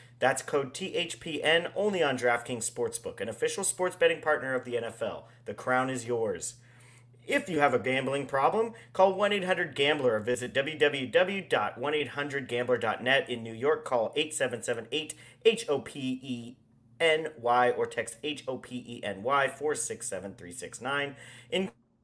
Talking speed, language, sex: 120 wpm, English, male